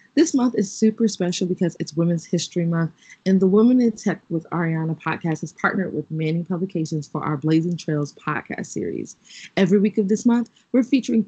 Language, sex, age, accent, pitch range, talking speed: English, female, 20-39, American, 165-215 Hz, 190 wpm